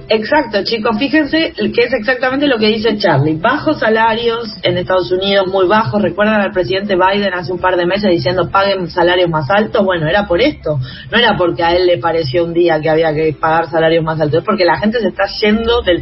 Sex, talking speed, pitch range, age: female, 220 wpm, 165-210 Hz, 30-49